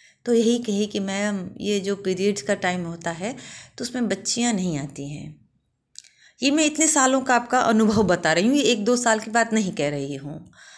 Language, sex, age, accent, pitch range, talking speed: Gujarati, female, 30-49, native, 200-270 Hz, 210 wpm